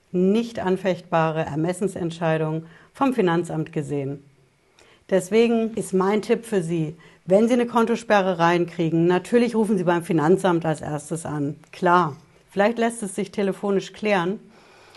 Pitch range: 170-210 Hz